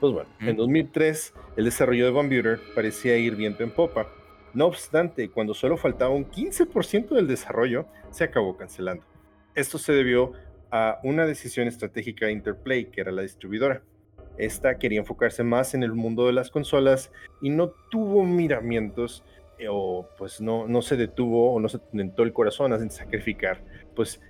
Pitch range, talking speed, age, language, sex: 95-130 Hz, 170 wpm, 30-49, Spanish, male